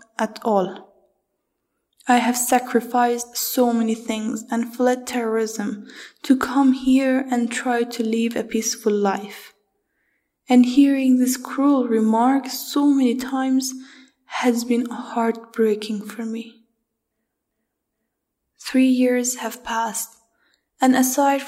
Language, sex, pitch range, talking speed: English, female, 230-260 Hz, 110 wpm